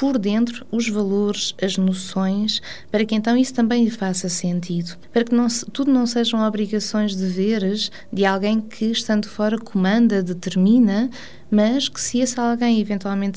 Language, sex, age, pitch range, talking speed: Portuguese, female, 20-39, 185-230 Hz, 150 wpm